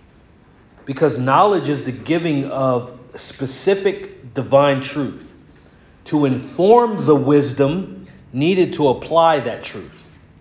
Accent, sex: American, male